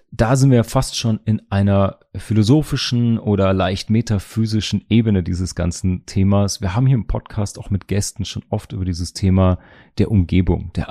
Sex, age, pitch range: male, 30-49, 90-105 Hz